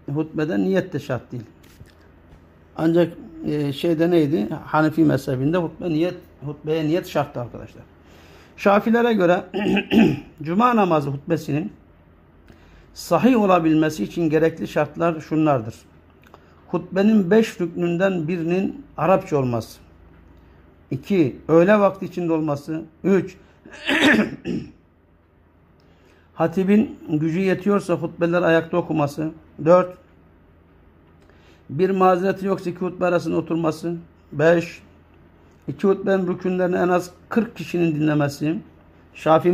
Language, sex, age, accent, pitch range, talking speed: Turkish, male, 60-79, native, 110-175 Hz, 95 wpm